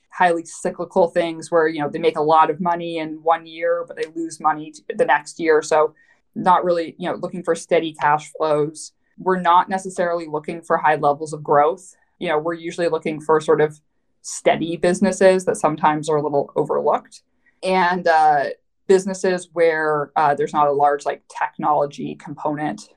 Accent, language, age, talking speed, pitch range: American, English, 20-39, 180 wpm, 155-185 Hz